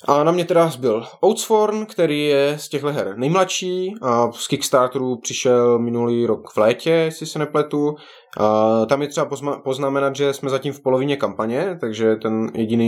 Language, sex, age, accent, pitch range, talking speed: Czech, male, 20-39, native, 105-125 Hz, 175 wpm